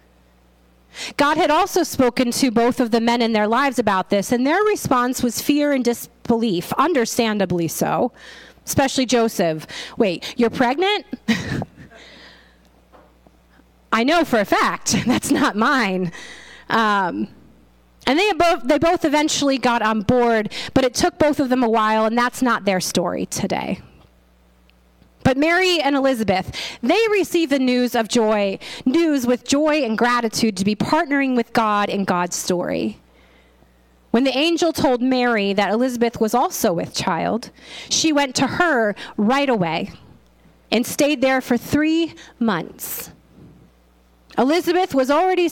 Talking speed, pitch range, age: 140 wpm, 200-285 Hz, 30-49